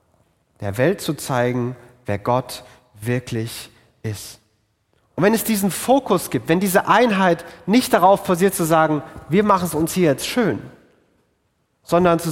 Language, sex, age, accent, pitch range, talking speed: German, male, 30-49, German, 125-195 Hz, 150 wpm